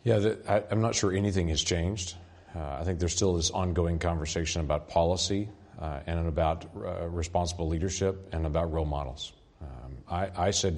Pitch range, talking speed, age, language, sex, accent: 75-90 Hz, 175 wpm, 40-59, English, male, American